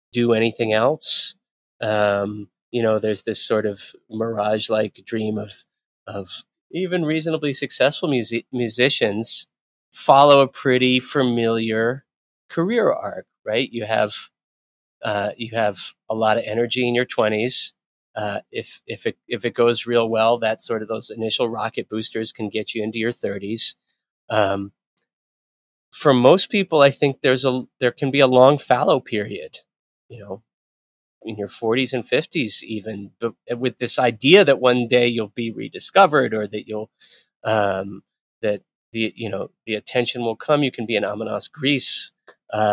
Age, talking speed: 30-49, 155 wpm